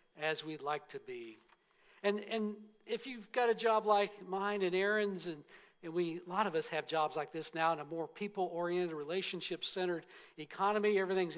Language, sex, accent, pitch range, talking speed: English, male, American, 170-210 Hz, 185 wpm